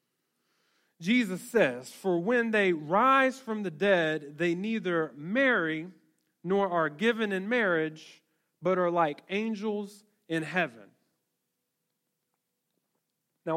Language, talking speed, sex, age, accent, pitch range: English, 105 wpm, male, 30-49, American, 170-220 Hz